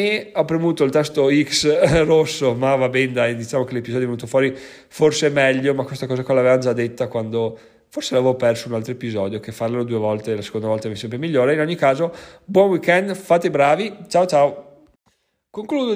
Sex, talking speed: male, 205 wpm